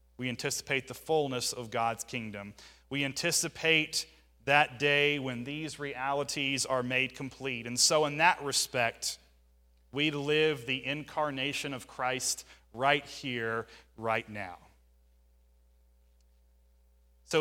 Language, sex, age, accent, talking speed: English, male, 30-49, American, 115 wpm